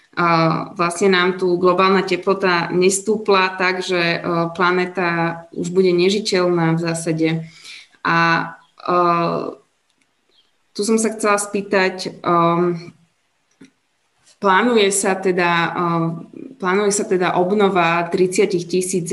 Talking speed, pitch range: 80 wpm, 175-205 Hz